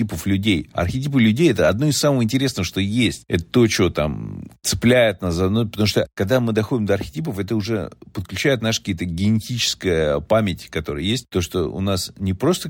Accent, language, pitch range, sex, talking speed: native, Russian, 90-120 Hz, male, 195 wpm